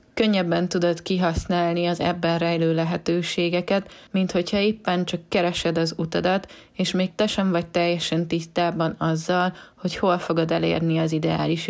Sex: female